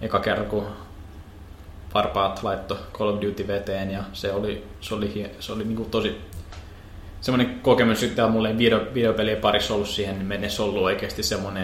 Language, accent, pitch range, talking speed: Finnish, native, 95-110 Hz, 170 wpm